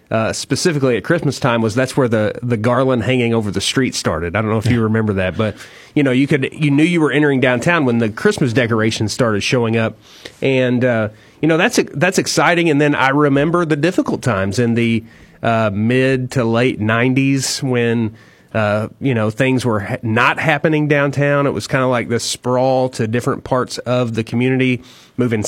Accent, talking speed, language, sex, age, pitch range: American, 205 wpm, English, male, 30-49, 115-140 Hz